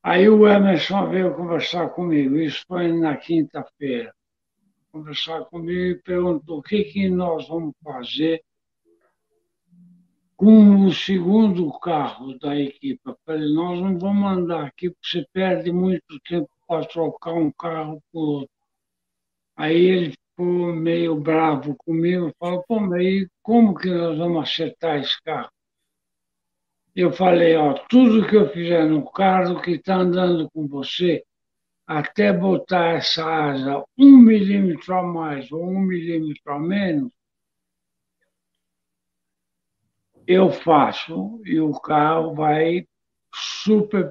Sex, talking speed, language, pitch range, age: male, 130 wpm, Portuguese, 155-190 Hz, 60-79